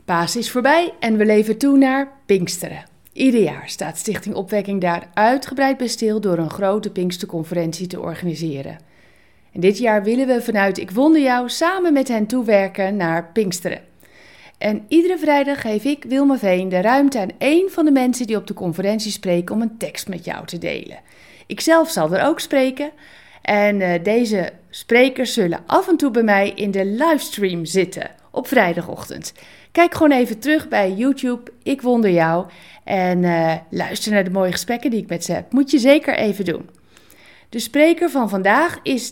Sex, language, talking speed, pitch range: female, Dutch, 175 wpm, 185-275 Hz